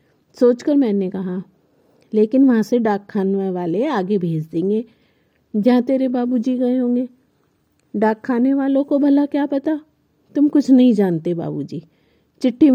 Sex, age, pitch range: female, 50-69, 180-250 Hz